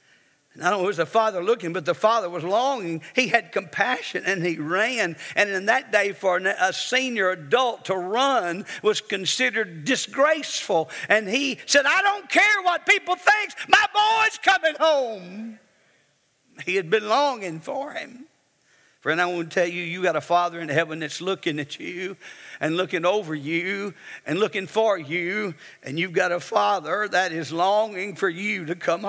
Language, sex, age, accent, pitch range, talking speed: English, male, 50-69, American, 165-225 Hz, 180 wpm